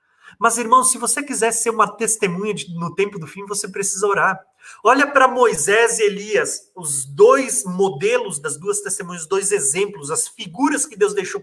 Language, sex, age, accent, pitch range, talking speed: Portuguese, male, 30-49, Brazilian, 195-295 Hz, 180 wpm